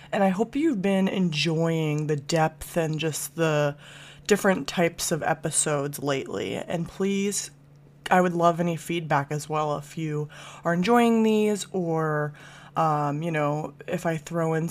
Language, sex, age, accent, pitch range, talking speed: English, female, 20-39, American, 155-185 Hz, 155 wpm